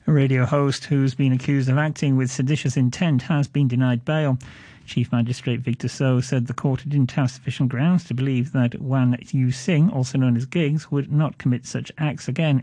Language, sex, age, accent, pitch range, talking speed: English, male, 40-59, British, 120-145 Hz, 200 wpm